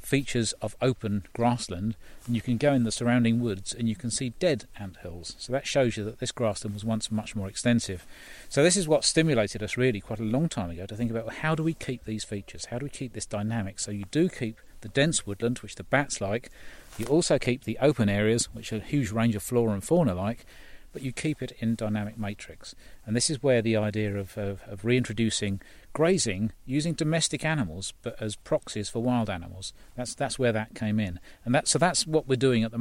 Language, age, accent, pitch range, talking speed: English, 40-59, British, 105-130 Hz, 230 wpm